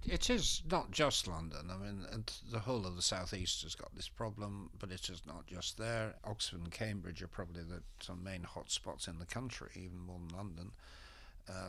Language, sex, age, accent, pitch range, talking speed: English, male, 60-79, British, 85-105 Hz, 205 wpm